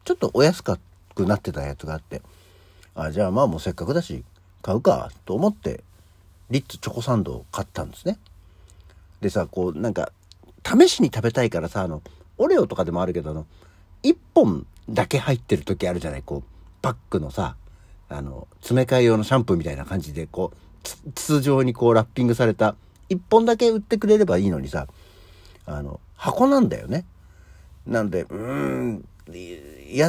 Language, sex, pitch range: Japanese, male, 85-130 Hz